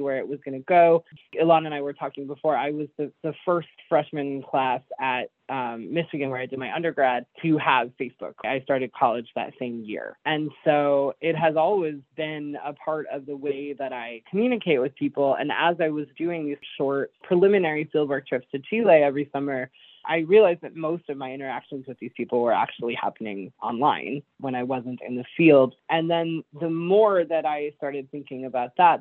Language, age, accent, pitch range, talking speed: English, 20-39, American, 135-160 Hz, 200 wpm